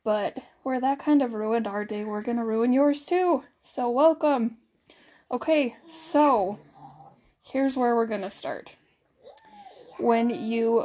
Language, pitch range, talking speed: English, 215-260 Hz, 145 wpm